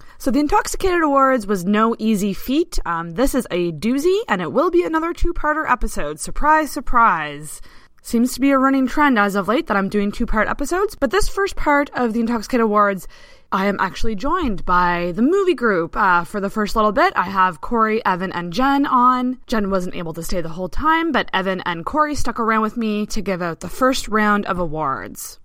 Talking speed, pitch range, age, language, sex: 210 wpm, 190-275 Hz, 20-39, English, female